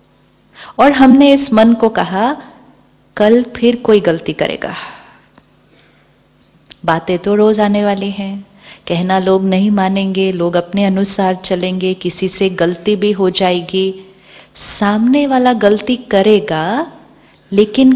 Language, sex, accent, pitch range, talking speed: Hindi, female, native, 200-265 Hz, 120 wpm